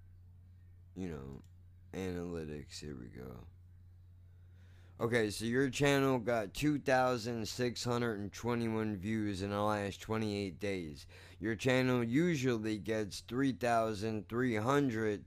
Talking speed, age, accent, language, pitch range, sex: 90 wpm, 20-39, American, English, 90-115 Hz, male